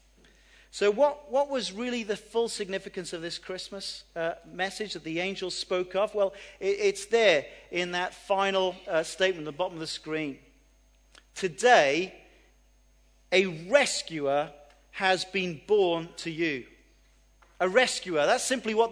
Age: 40-59